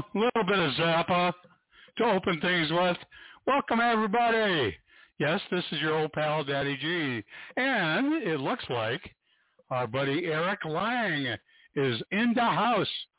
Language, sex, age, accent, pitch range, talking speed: English, male, 60-79, American, 135-180 Hz, 135 wpm